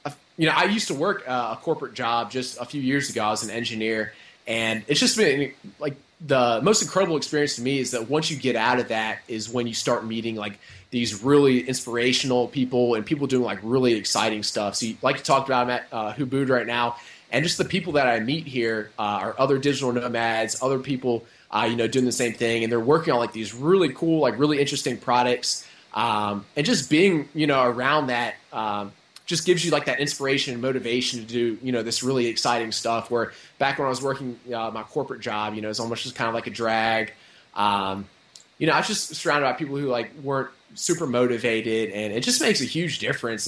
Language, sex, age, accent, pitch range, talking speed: English, male, 20-39, American, 115-140 Hz, 230 wpm